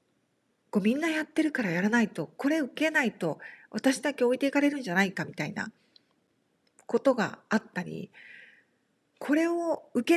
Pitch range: 185-270 Hz